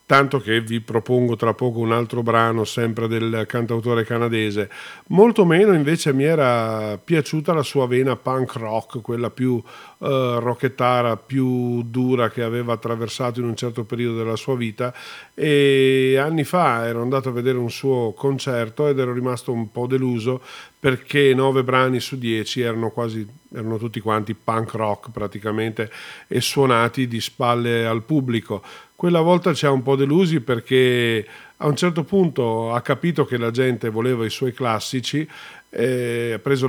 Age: 40-59